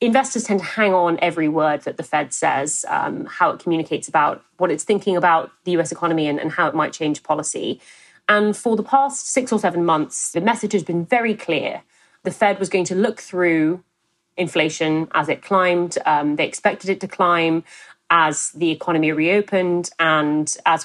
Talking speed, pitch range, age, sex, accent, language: 195 wpm, 160-195 Hz, 30-49, female, British, English